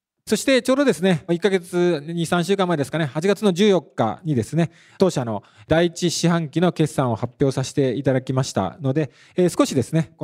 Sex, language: male, Japanese